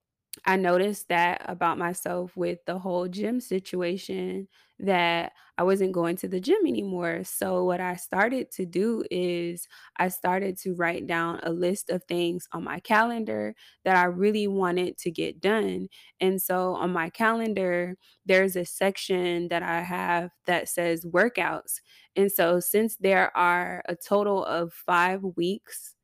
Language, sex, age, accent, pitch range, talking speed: English, female, 20-39, American, 175-195 Hz, 155 wpm